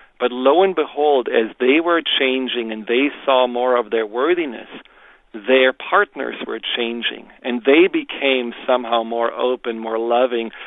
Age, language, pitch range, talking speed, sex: 40-59, English, 120-130 Hz, 150 wpm, male